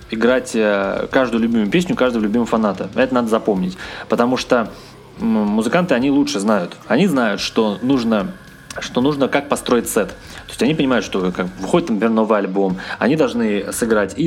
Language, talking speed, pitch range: Russian, 160 wpm, 105-175 Hz